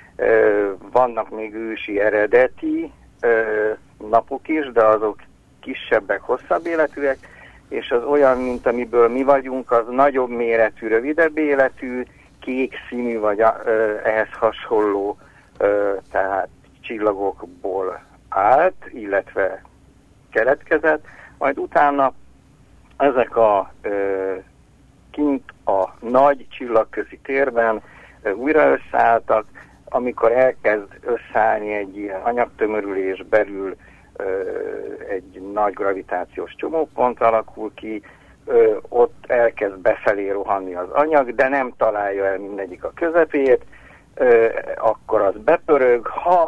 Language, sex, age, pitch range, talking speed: Hungarian, male, 60-79, 105-150 Hz, 100 wpm